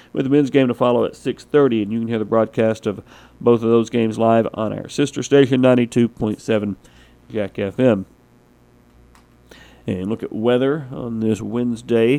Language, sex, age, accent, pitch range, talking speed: English, male, 40-59, American, 110-135 Hz, 185 wpm